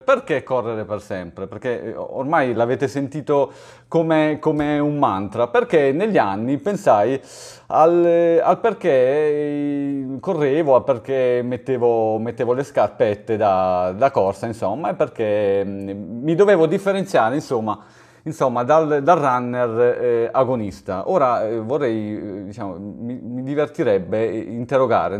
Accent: native